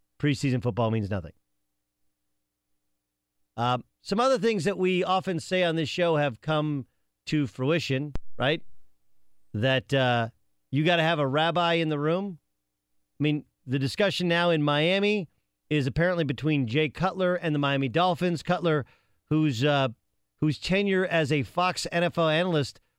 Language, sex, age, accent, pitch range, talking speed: English, male, 40-59, American, 120-175 Hz, 145 wpm